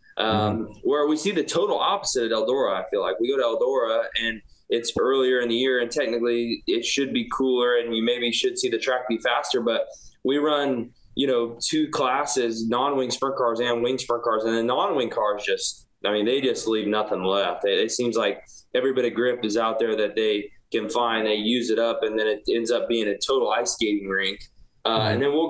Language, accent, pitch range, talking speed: English, American, 110-145 Hz, 225 wpm